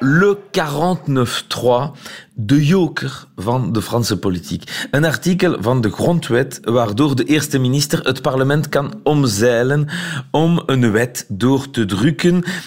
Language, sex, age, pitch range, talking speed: Dutch, male, 40-59, 115-155 Hz, 130 wpm